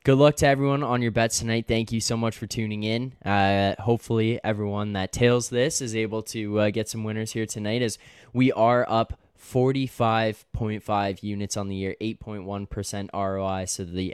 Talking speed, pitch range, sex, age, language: 185 wpm, 95-115 Hz, male, 10-29, English